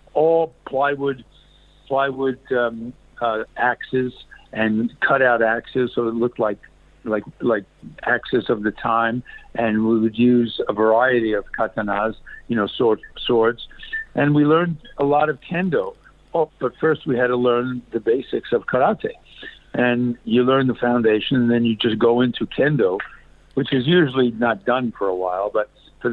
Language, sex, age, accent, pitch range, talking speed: English, male, 60-79, American, 115-135 Hz, 165 wpm